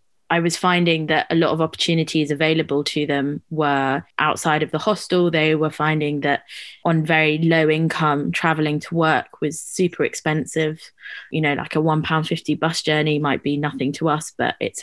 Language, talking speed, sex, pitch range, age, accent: English, 180 wpm, female, 150-175 Hz, 20-39, British